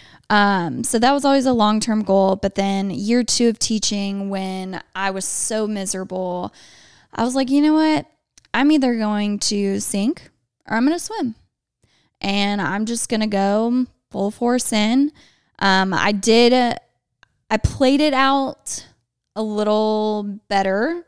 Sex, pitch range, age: female, 190-230 Hz, 20-39